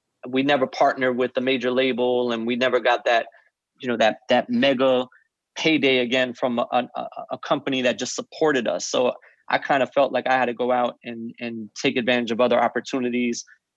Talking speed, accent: 200 wpm, American